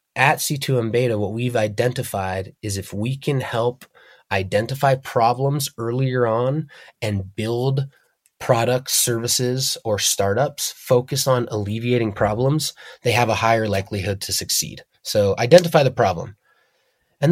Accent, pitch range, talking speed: American, 105-130 Hz, 130 wpm